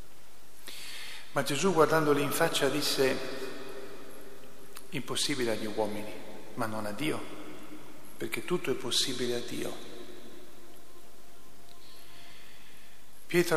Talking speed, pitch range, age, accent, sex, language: 90 wpm, 125-145 Hz, 50-69, native, male, Italian